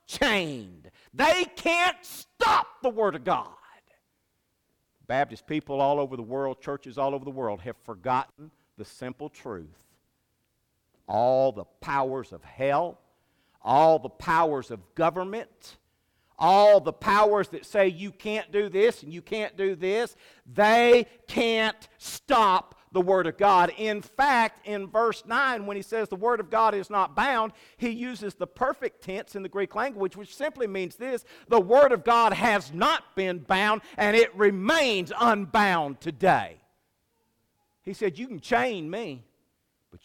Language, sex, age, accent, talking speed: English, male, 50-69, American, 155 wpm